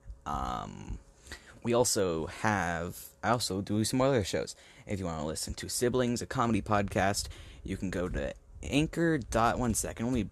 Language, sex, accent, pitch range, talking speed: English, male, American, 80-115 Hz, 165 wpm